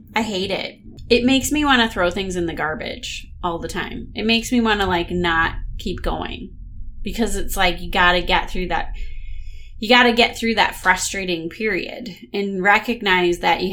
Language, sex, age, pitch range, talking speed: English, female, 20-39, 180-230 Hz, 200 wpm